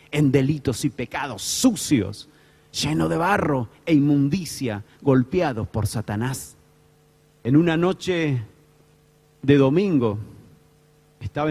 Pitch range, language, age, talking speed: 125-170 Hz, Spanish, 40-59, 100 wpm